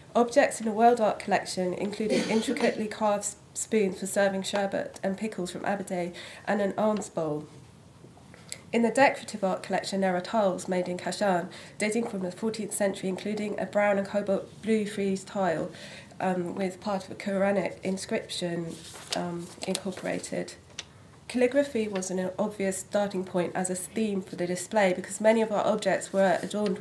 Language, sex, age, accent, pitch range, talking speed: English, female, 30-49, British, 185-215 Hz, 165 wpm